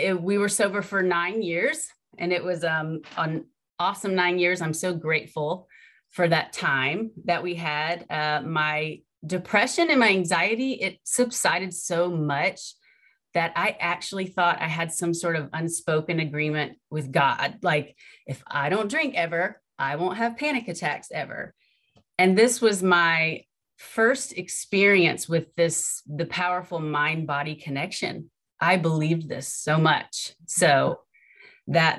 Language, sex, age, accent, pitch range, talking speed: English, female, 30-49, American, 155-190 Hz, 145 wpm